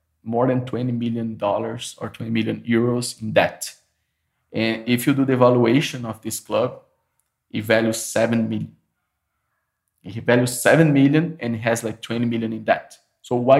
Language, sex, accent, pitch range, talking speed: English, male, Brazilian, 115-145 Hz, 165 wpm